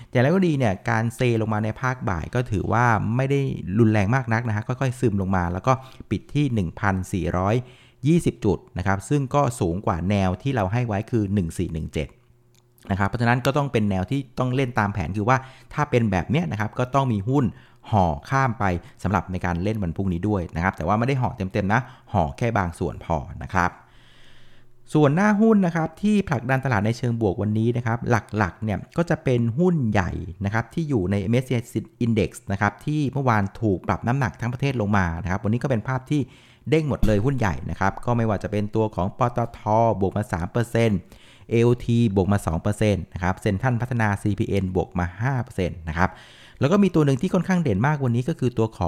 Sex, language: male, Thai